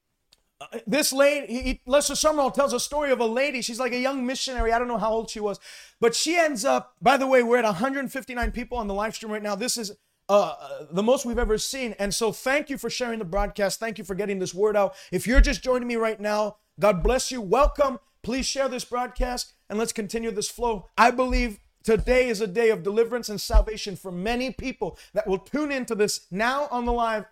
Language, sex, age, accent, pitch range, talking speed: English, male, 30-49, American, 210-265 Hz, 230 wpm